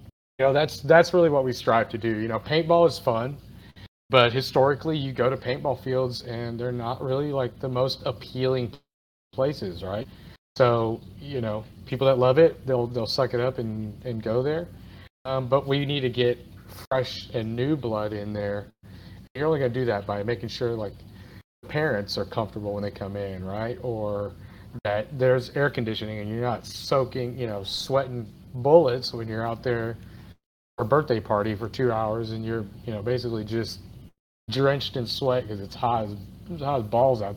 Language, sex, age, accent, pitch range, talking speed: English, male, 30-49, American, 105-130 Hz, 190 wpm